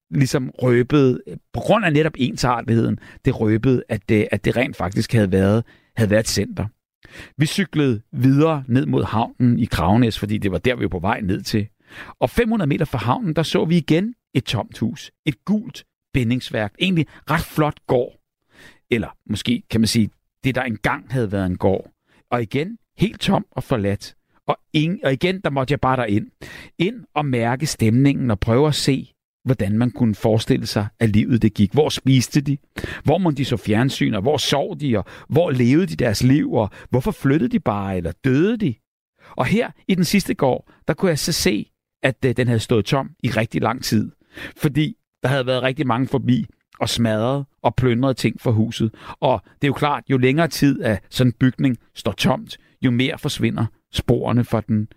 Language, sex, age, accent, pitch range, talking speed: Danish, male, 60-79, native, 110-145 Hz, 200 wpm